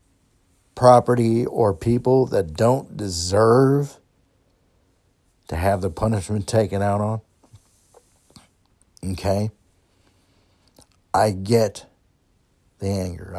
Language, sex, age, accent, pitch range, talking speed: English, male, 60-79, American, 95-120 Hz, 80 wpm